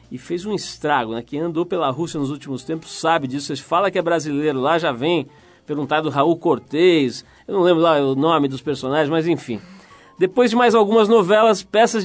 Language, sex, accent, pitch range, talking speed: Portuguese, male, Brazilian, 150-190 Hz, 205 wpm